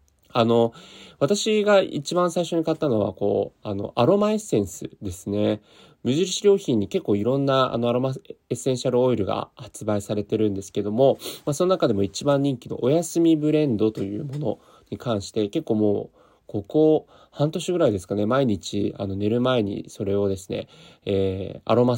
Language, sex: Japanese, male